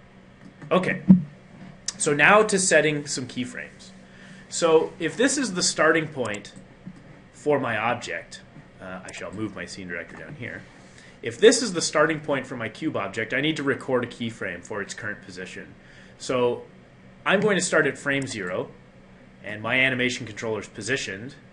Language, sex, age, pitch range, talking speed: English, male, 30-49, 115-160 Hz, 165 wpm